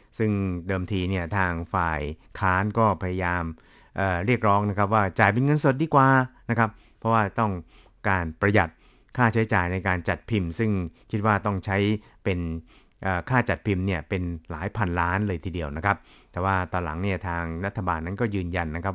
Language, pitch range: Thai, 90-110 Hz